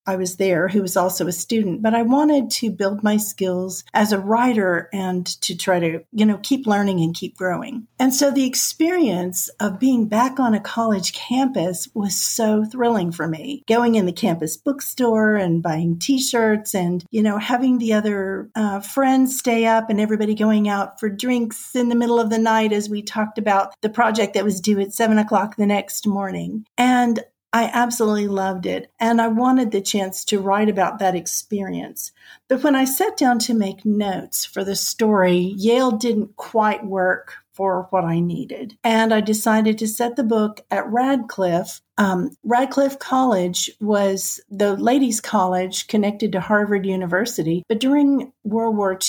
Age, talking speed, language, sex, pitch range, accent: 40-59, 180 wpm, English, female, 190-235 Hz, American